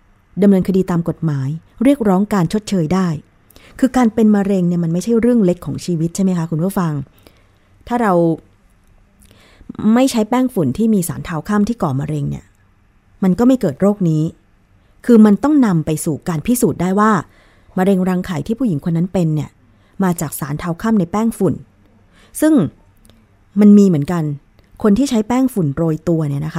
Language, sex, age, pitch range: Thai, female, 20-39, 140-205 Hz